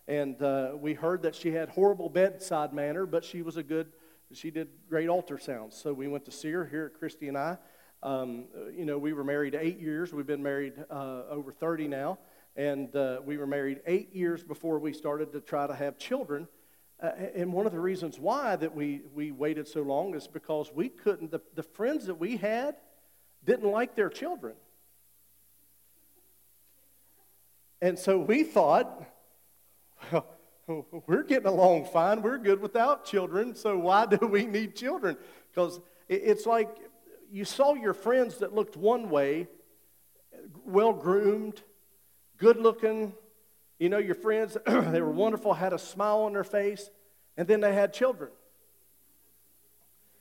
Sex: male